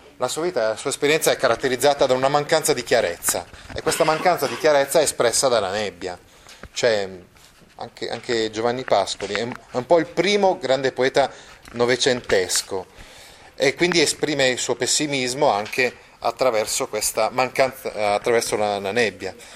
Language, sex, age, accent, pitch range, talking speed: Italian, male, 30-49, native, 115-150 Hz, 155 wpm